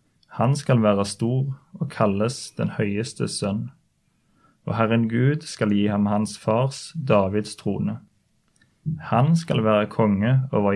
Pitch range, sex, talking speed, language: 105-135 Hz, male, 135 wpm, English